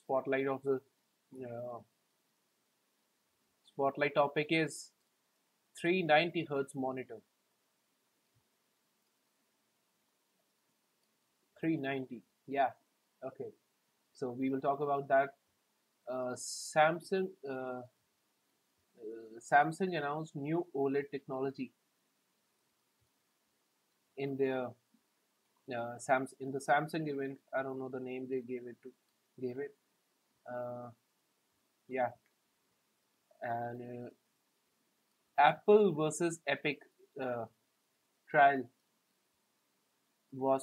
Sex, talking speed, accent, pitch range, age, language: male, 85 wpm, Indian, 125-145 Hz, 30-49, English